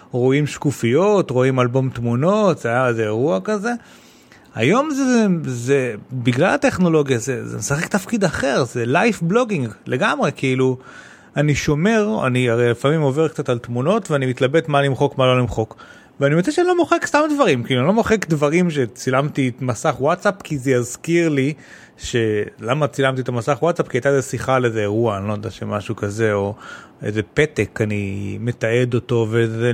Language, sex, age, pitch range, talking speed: Hebrew, male, 30-49, 125-190 Hz, 175 wpm